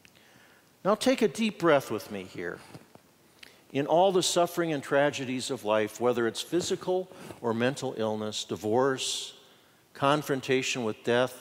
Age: 50-69